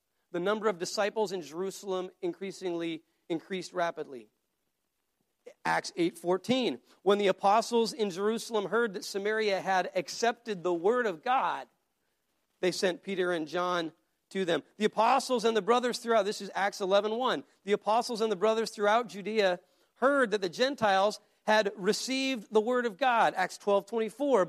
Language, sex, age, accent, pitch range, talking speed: English, male, 40-59, American, 195-235 Hz, 150 wpm